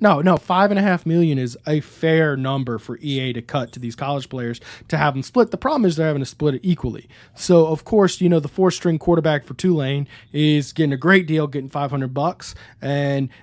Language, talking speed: English, 230 wpm